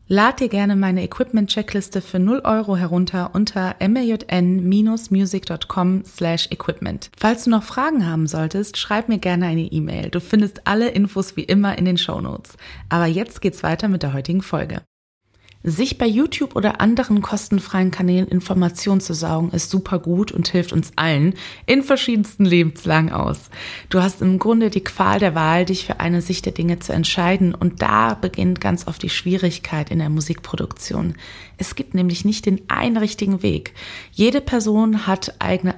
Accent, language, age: German, German, 20-39